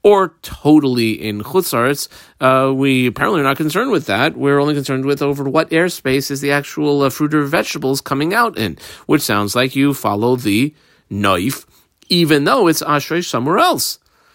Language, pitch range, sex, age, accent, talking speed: English, 110-150 Hz, male, 40-59, American, 170 wpm